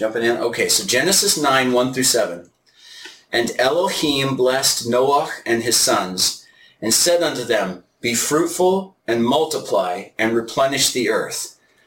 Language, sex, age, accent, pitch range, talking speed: English, male, 40-59, American, 125-200 Hz, 140 wpm